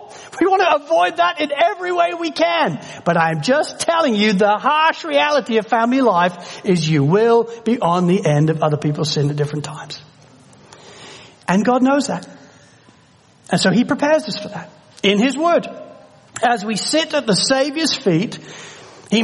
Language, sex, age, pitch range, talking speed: English, male, 60-79, 180-275 Hz, 180 wpm